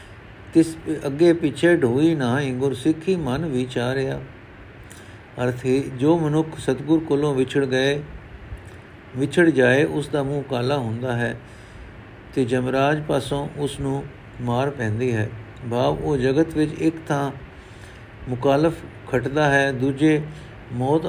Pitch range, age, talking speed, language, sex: 120-150 Hz, 50-69, 125 wpm, Punjabi, male